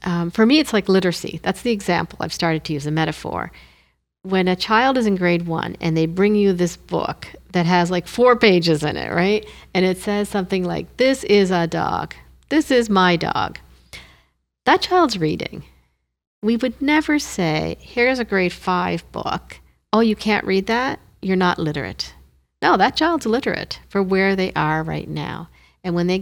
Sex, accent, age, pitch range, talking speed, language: female, American, 40-59, 165-210 Hz, 190 wpm, English